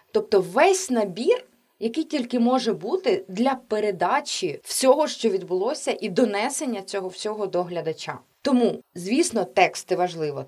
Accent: native